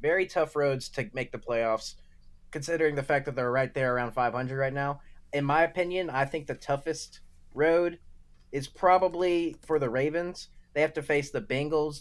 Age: 20-39